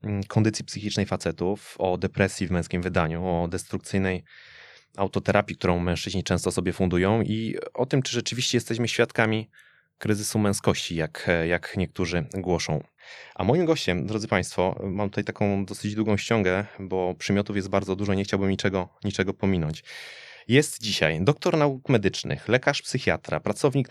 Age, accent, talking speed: 20-39, native, 145 wpm